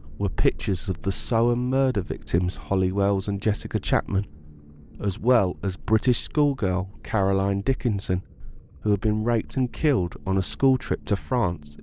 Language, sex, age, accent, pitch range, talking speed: English, male, 30-49, British, 75-115 Hz, 155 wpm